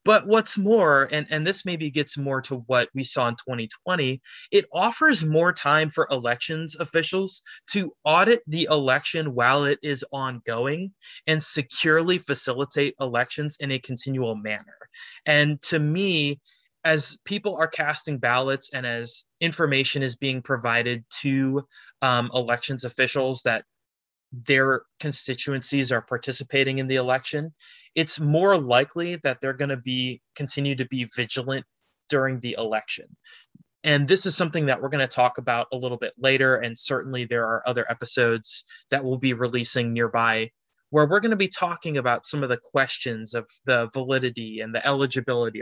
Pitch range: 125-155 Hz